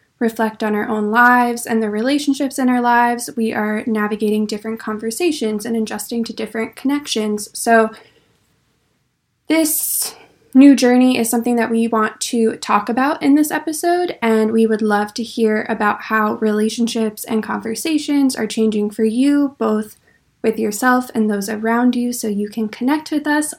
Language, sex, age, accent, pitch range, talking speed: English, female, 10-29, American, 220-250 Hz, 165 wpm